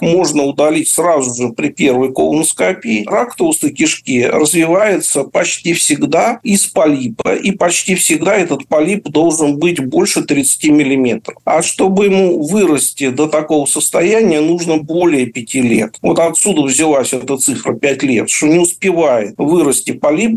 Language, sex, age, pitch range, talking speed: Russian, male, 50-69, 150-200 Hz, 140 wpm